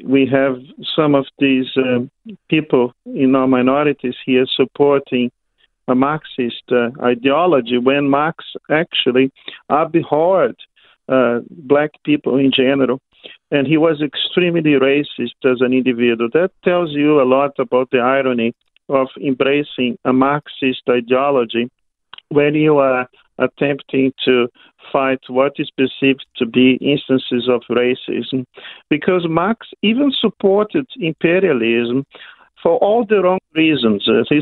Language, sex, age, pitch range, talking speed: English, male, 50-69, 130-155 Hz, 125 wpm